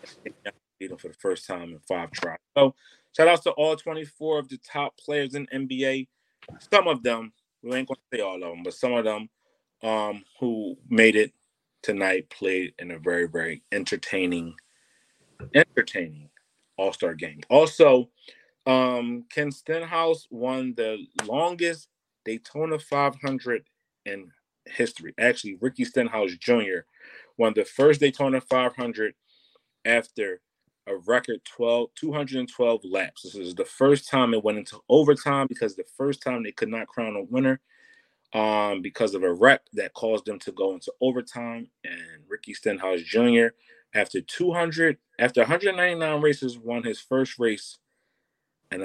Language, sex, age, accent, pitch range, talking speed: English, male, 30-49, American, 110-150 Hz, 150 wpm